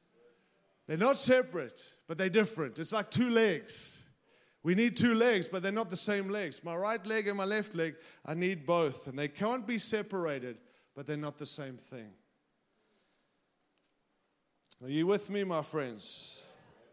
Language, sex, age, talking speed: English, male, 40-59, 165 wpm